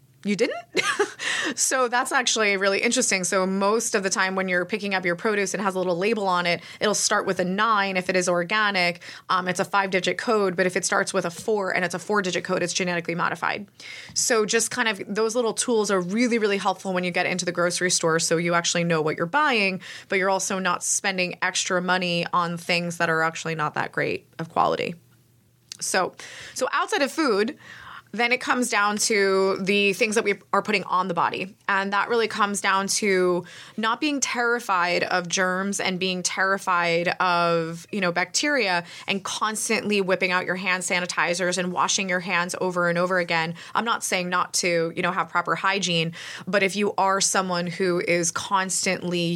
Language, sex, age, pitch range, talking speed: English, female, 20-39, 175-205 Hz, 205 wpm